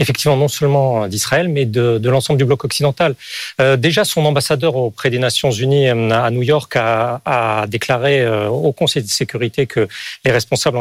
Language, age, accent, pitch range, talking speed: French, 40-59, French, 120-155 Hz, 190 wpm